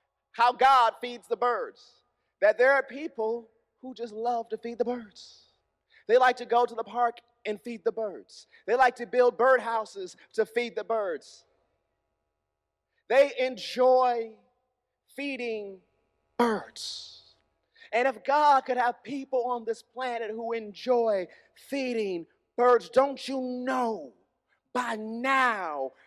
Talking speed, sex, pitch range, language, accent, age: 135 wpm, male, 220-265 Hz, English, American, 30-49